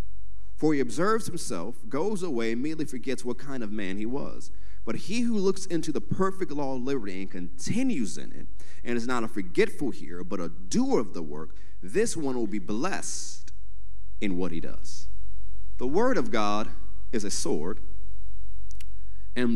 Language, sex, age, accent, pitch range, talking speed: English, male, 40-59, American, 90-145 Hz, 175 wpm